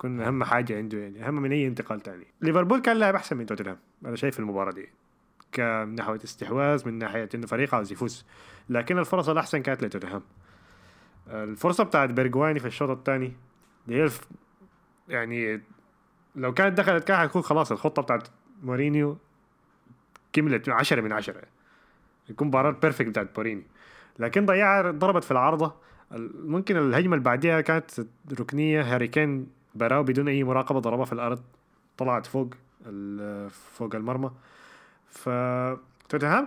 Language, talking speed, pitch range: Arabic, 140 wpm, 120-160 Hz